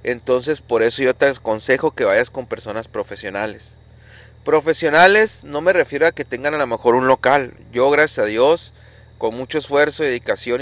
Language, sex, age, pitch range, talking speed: Spanish, male, 30-49, 115-155 Hz, 175 wpm